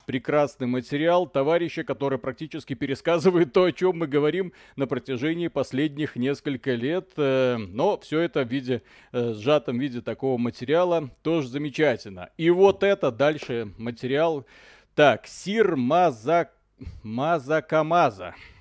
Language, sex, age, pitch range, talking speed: Russian, male, 30-49, 130-170 Hz, 115 wpm